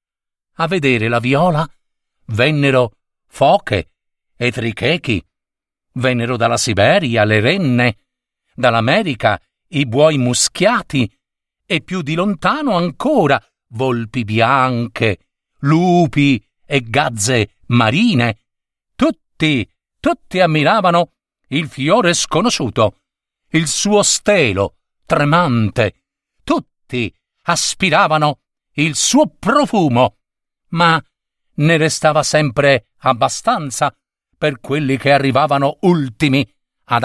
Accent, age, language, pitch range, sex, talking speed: native, 50-69, Italian, 125-170 Hz, male, 85 wpm